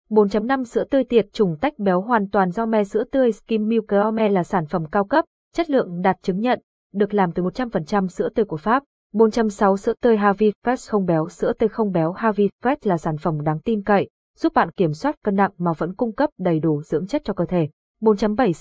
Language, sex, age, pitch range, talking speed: Vietnamese, female, 20-39, 185-235 Hz, 220 wpm